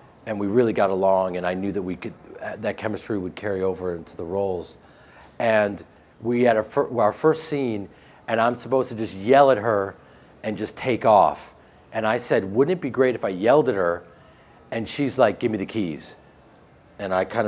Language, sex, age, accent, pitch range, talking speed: English, male, 40-59, American, 100-125 Hz, 205 wpm